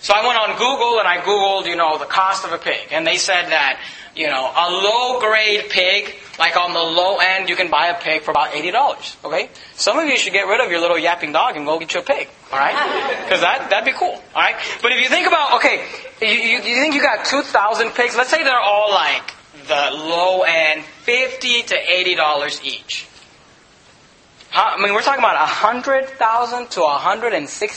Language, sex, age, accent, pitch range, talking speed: English, male, 30-49, American, 180-245 Hz, 210 wpm